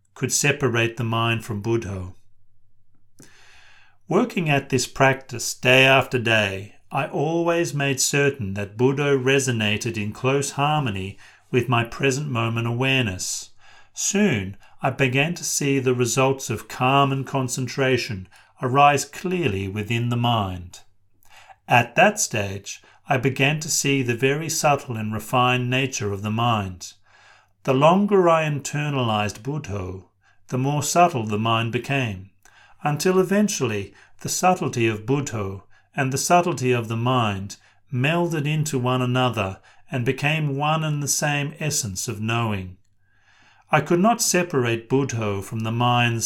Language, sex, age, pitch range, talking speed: English, male, 40-59, 105-140 Hz, 135 wpm